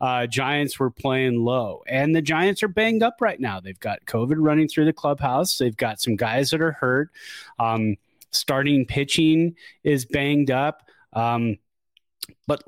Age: 30-49